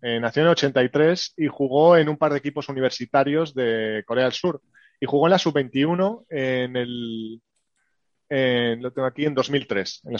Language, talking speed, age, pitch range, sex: Spanish, 190 wpm, 30-49, 120-155 Hz, male